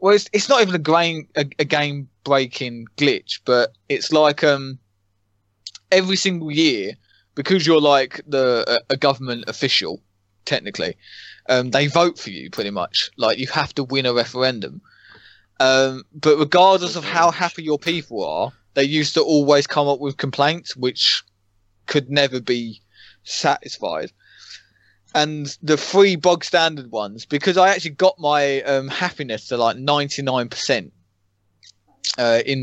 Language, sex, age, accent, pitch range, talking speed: English, male, 20-39, British, 125-155 Hz, 145 wpm